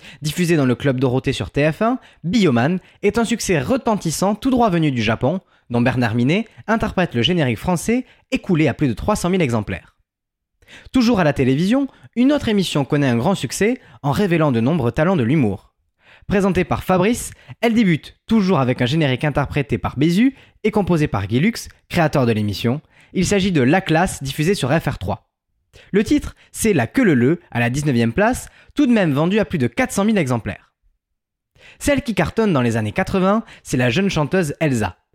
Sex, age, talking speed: male, 20-39, 190 wpm